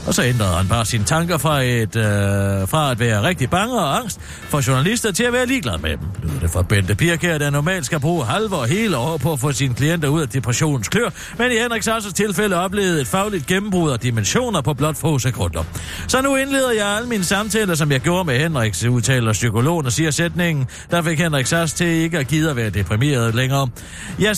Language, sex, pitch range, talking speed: Danish, male, 120-195 Hz, 220 wpm